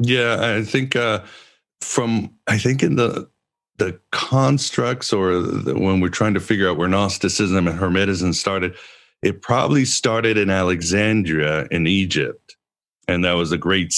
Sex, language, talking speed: male, English, 155 wpm